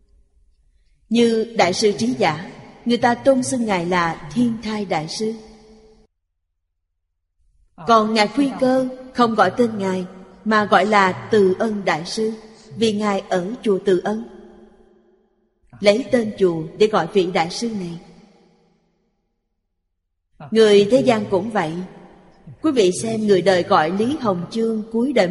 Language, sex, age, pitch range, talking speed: Vietnamese, female, 30-49, 185-220 Hz, 145 wpm